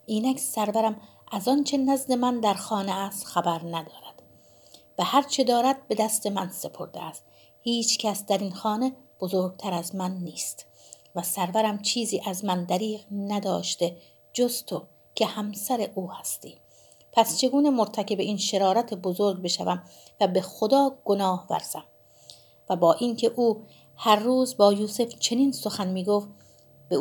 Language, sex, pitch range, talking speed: Persian, female, 175-225 Hz, 140 wpm